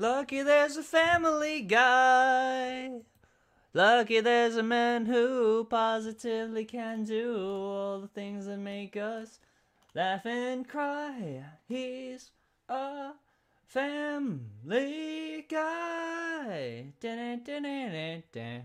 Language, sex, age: English, male, 20-39